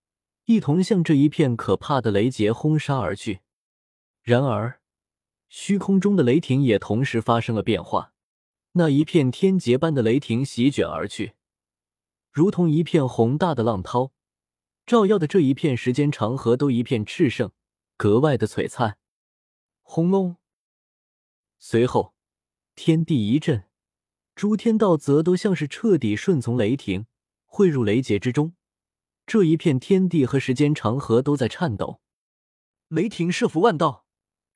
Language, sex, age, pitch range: Chinese, male, 20-39, 115-175 Hz